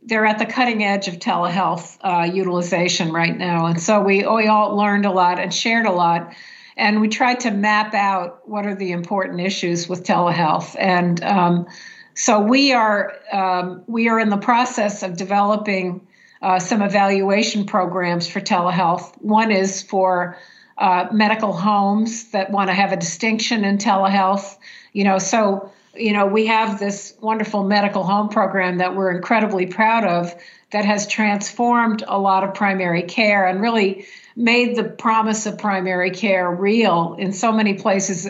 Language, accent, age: English, American, 50-69